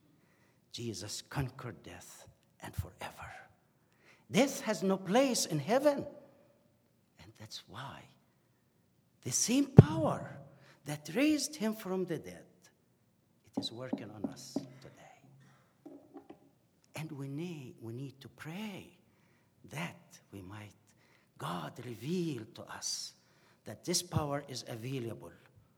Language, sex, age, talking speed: English, male, 60-79, 105 wpm